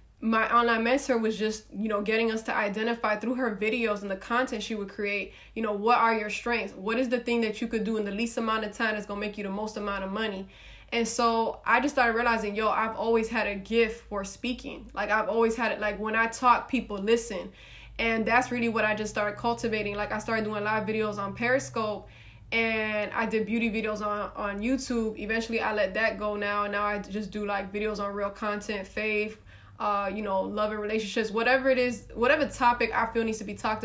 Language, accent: English, American